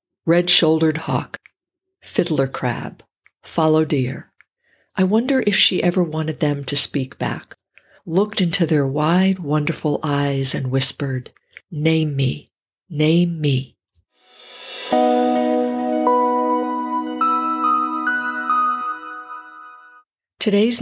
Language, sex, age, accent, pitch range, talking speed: English, female, 50-69, American, 140-190 Hz, 85 wpm